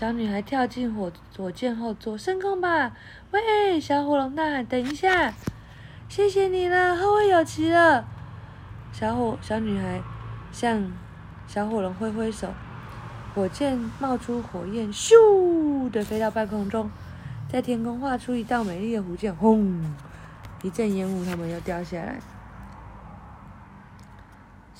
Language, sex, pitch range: Chinese, female, 175-250 Hz